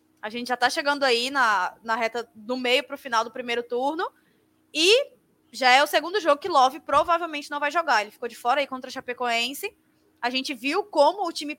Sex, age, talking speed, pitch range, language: female, 20-39, 225 wpm, 240-310 Hz, Portuguese